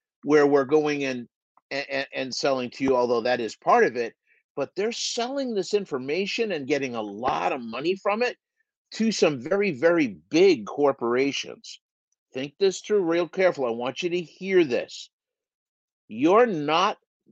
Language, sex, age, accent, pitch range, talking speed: English, male, 50-69, American, 140-210 Hz, 160 wpm